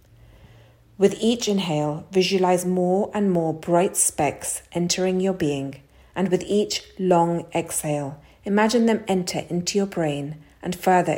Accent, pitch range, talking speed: British, 135-185 Hz, 135 wpm